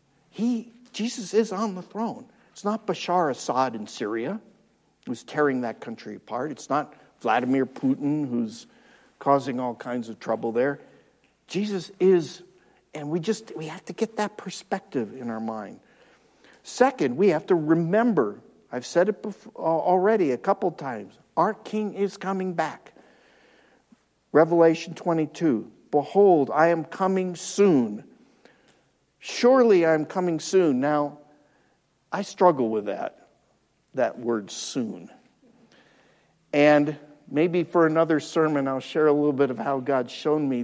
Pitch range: 135-195 Hz